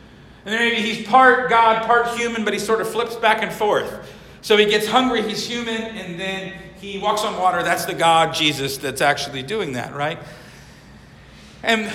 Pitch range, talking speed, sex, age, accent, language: 165-225 Hz, 190 wpm, male, 40-59, American, English